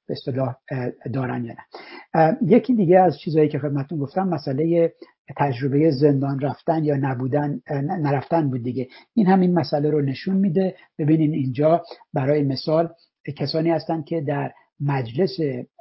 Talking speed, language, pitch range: 135 wpm, Persian, 140-170 Hz